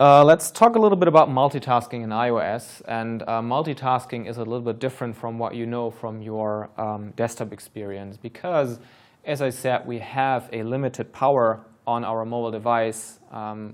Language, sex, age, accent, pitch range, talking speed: English, male, 20-39, German, 115-140 Hz, 180 wpm